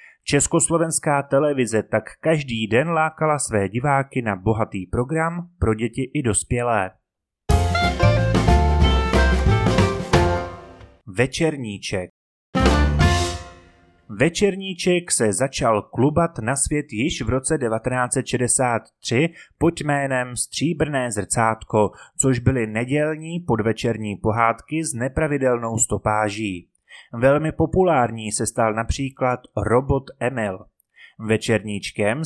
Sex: male